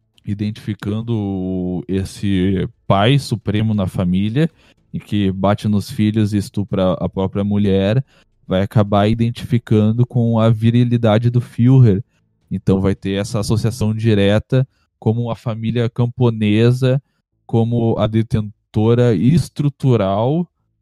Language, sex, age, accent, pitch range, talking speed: Portuguese, male, 10-29, Brazilian, 105-130 Hz, 110 wpm